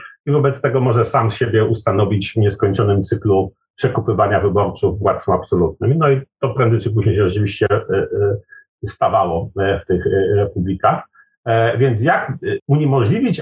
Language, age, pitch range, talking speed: Polish, 50-69, 120-150 Hz, 130 wpm